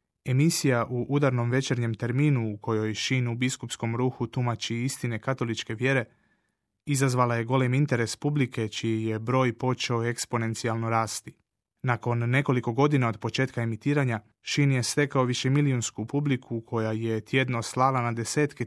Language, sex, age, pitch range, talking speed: Croatian, male, 30-49, 115-130 Hz, 140 wpm